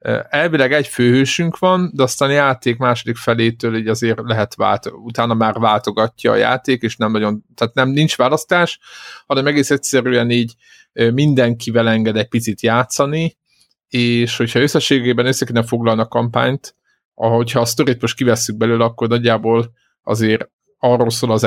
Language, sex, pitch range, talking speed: Hungarian, male, 110-125 Hz, 150 wpm